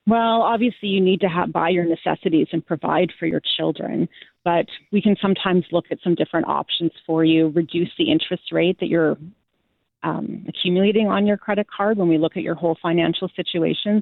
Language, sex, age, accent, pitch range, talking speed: English, female, 30-49, American, 170-205 Hz, 190 wpm